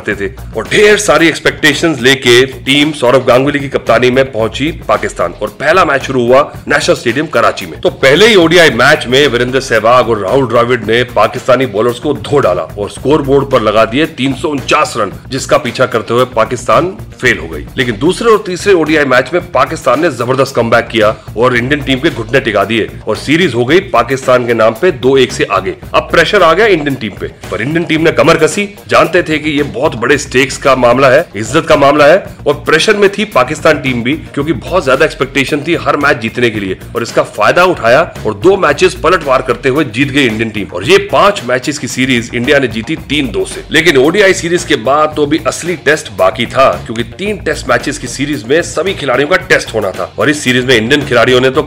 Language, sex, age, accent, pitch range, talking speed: Hindi, male, 40-59, native, 120-155 Hz, 185 wpm